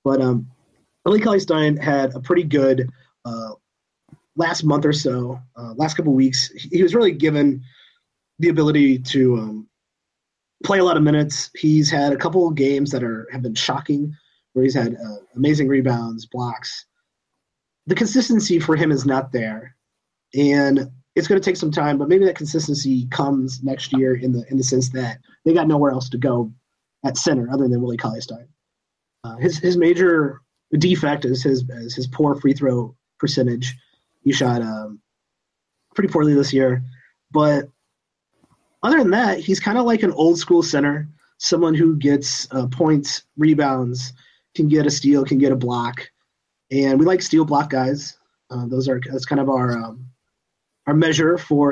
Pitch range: 130-155 Hz